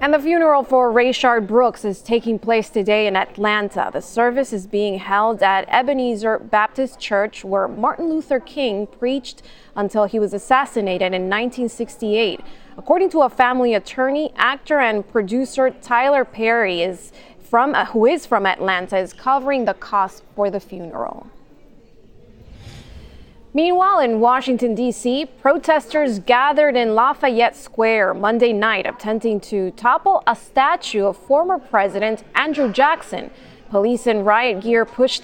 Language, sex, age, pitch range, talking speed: English, female, 20-39, 205-260 Hz, 140 wpm